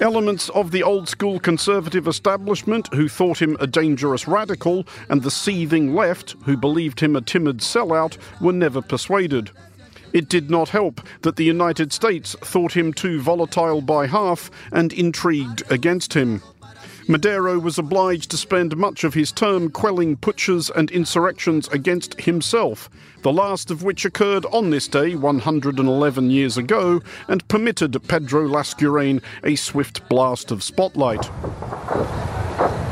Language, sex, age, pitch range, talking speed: English, male, 50-69, 145-180 Hz, 140 wpm